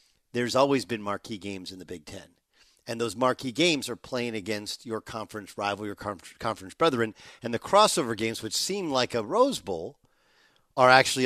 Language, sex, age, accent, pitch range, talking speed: English, male, 50-69, American, 110-145 Hz, 180 wpm